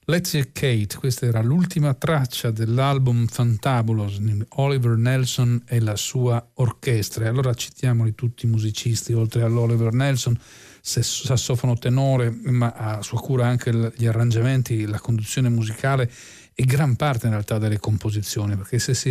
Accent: native